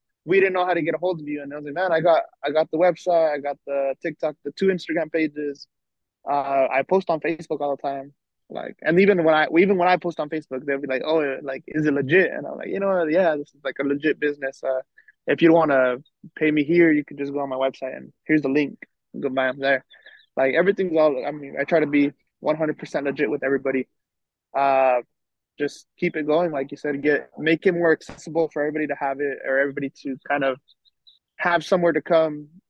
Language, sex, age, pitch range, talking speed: English, male, 20-39, 140-160 Hz, 240 wpm